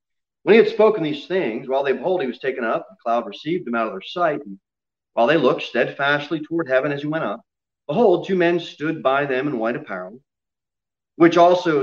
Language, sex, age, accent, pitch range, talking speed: English, male, 30-49, American, 130-205 Hz, 220 wpm